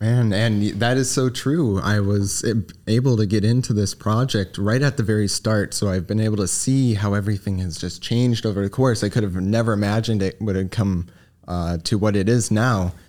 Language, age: English, 20-39